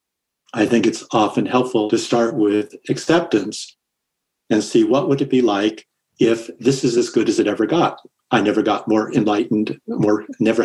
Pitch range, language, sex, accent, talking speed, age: 105-135 Hz, English, male, American, 180 wpm, 50-69